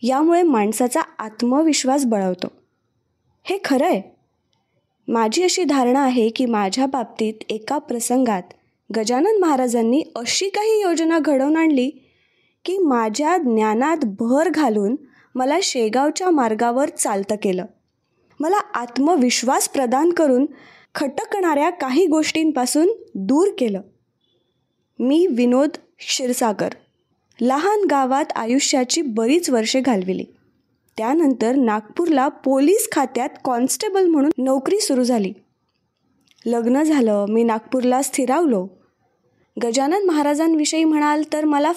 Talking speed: 100 wpm